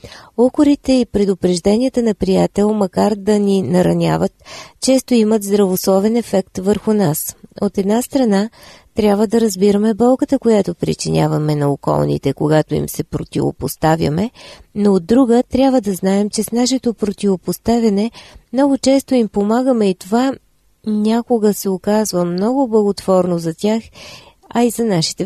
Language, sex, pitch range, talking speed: Bulgarian, female, 185-230 Hz, 135 wpm